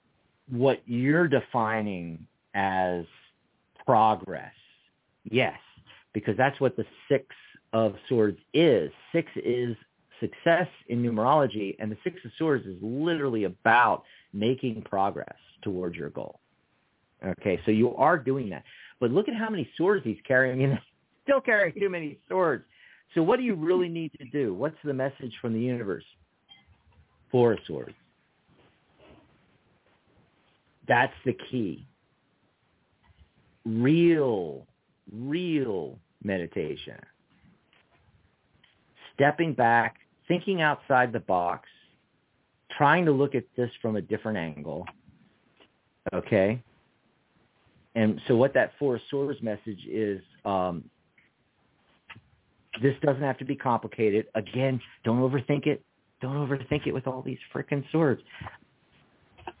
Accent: American